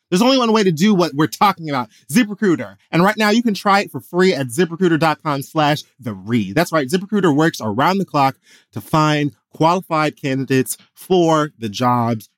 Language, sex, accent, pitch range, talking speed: English, male, American, 115-170 Hz, 190 wpm